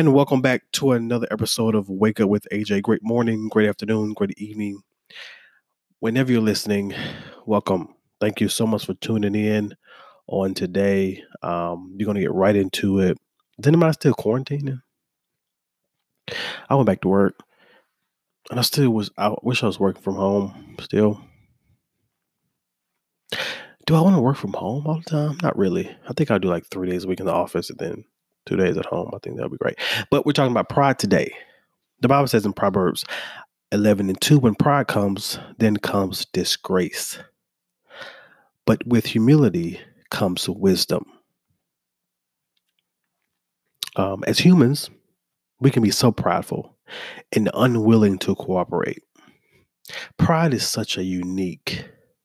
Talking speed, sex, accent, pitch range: 155 wpm, male, American, 95-130 Hz